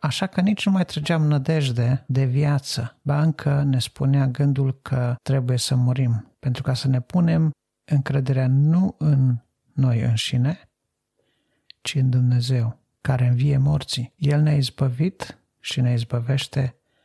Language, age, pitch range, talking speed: Romanian, 50-69, 125-145 Hz, 140 wpm